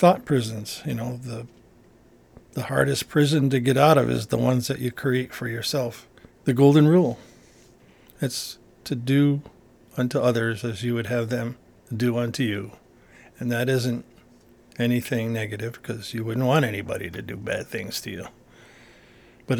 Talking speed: 160 wpm